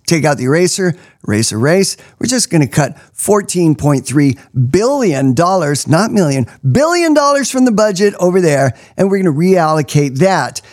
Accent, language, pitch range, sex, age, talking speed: American, English, 145-205 Hz, male, 50-69, 155 wpm